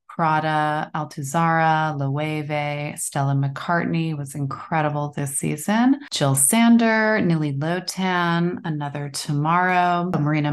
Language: English